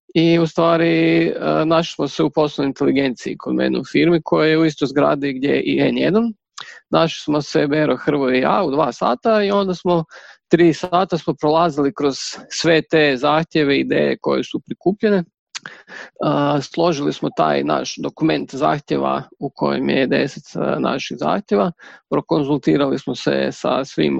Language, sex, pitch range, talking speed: Croatian, male, 145-175 Hz, 160 wpm